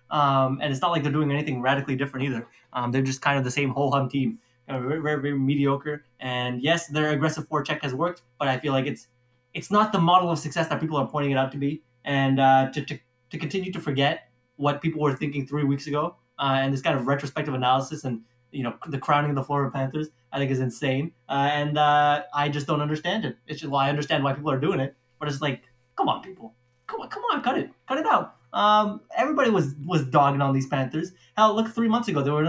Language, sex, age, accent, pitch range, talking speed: English, male, 20-39, American, 135-155 Hz, 255 wpm